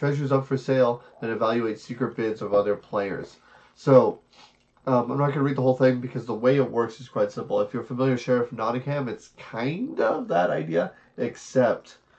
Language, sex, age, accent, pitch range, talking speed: English, male, 30-49, American, 110-130 Hz, 200 wpm